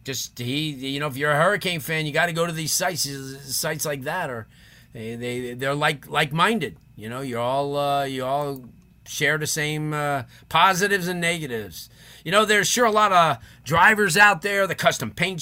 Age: 30-49